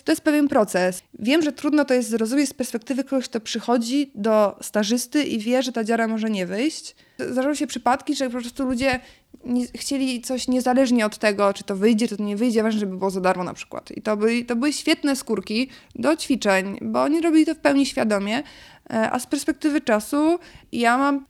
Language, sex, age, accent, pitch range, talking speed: Polish, female, 20-39, native, 210-265 Hz, 205 wpm